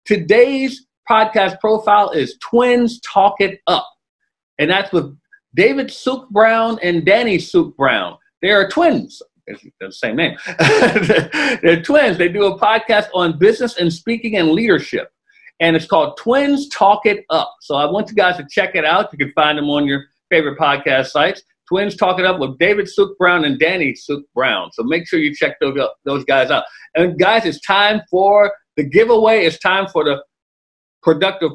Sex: male